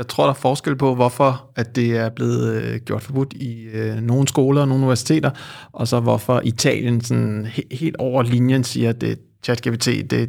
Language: Danish